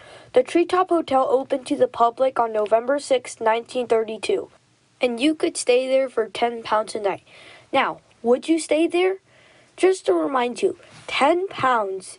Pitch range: 230-305 Hz